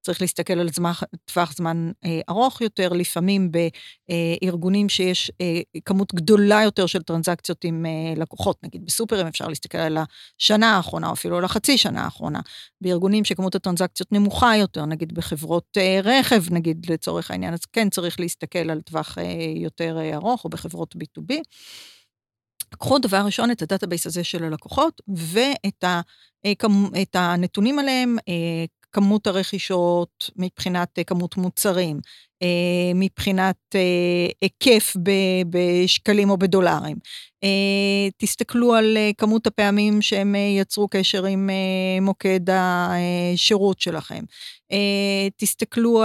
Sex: female